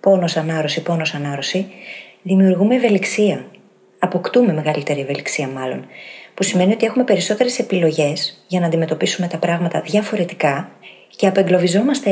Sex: female